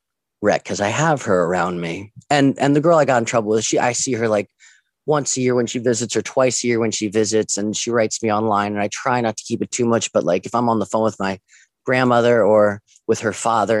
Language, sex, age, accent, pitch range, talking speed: English, male, 30-49, American, 100-120 Hz, 270 wpm